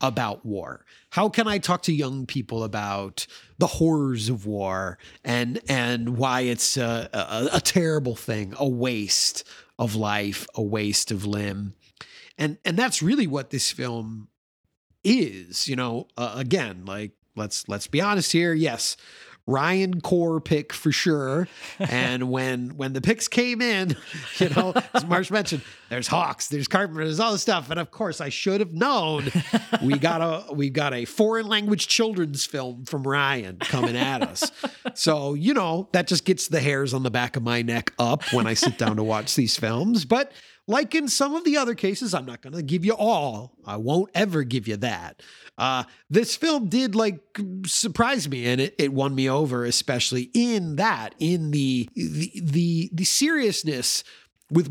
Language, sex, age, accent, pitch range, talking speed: English, male, 30-49, American, 125-190 Hz, 180 wpm